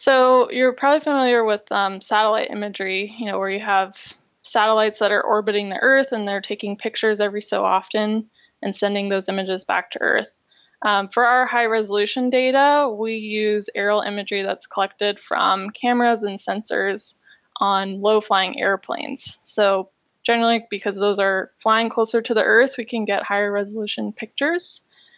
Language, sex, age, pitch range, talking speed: English, female, 20-39, 205-245 Hz, 155 wpm